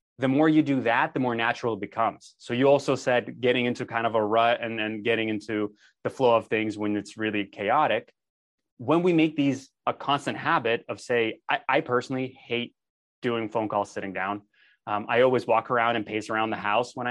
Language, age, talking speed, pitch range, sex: English, 20-39, 215 wpm, 115-140 Hz, male